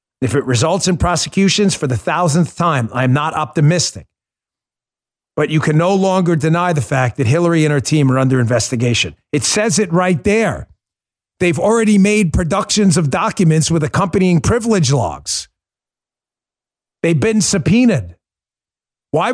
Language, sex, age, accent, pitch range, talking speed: English, male, 50-69, American, 140-195 Hz, 145 wpm